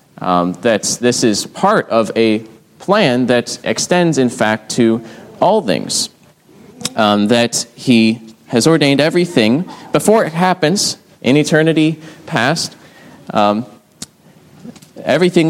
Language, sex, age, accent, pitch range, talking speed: English, male, 30-49, American, 105-135 Hz, 110 wpm